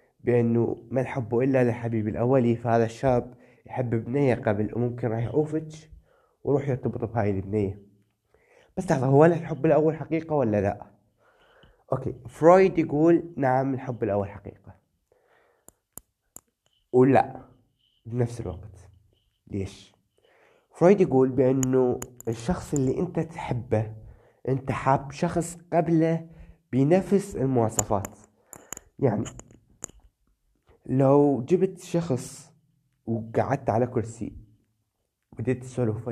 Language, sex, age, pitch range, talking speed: Arabic, male, 20-39, 110-140 Hz, 100 wpm